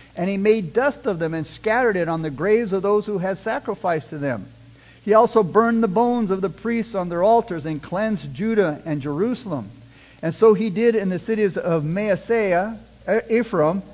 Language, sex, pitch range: English, male, 160-220 Hz